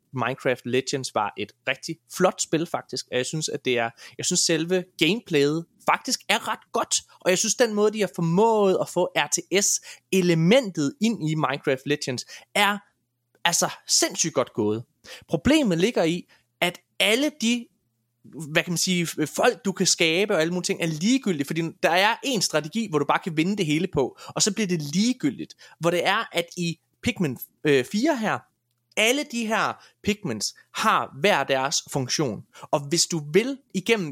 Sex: male